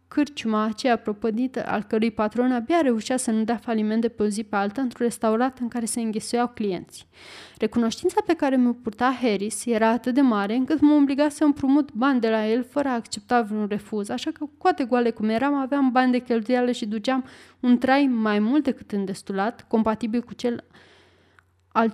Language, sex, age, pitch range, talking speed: Romanian, female, 20-39, 215-255 Hz, 190 wpm